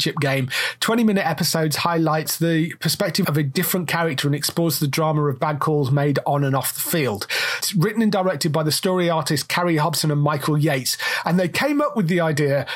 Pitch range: 145-185 Hz